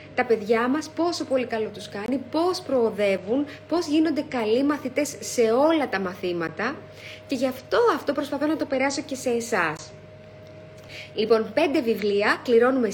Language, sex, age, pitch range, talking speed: Greek, female, 20-39, 205-285 Hz, 155 wpm